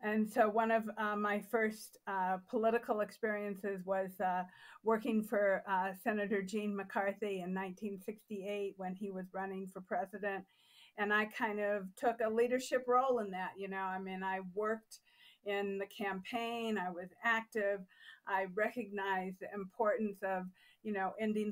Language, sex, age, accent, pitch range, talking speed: English, female, 50-69, American, 185-215 Hz, 155 wpm